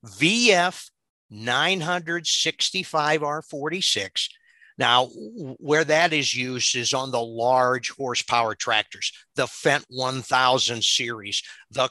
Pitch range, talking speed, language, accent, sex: 125-155 Hz, 90 wpm, English, American, male